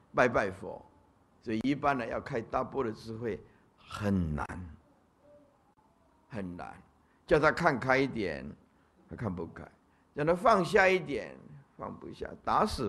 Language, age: Chinese, 60-79